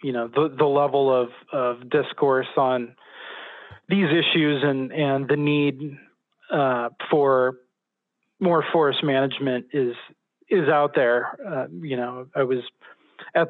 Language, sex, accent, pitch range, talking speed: English, male, American, 125-150 Hz, 135 wpm